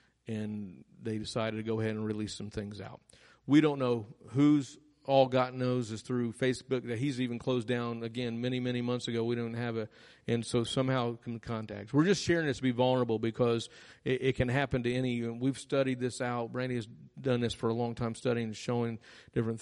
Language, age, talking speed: English, 50-69, 215 wpm